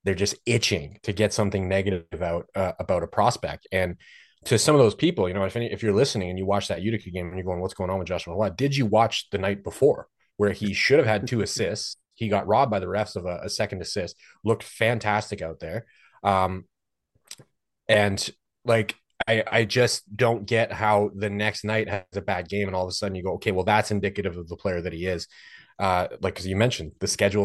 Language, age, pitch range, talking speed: English, 30-49, 95-110 Hz, 235 wpm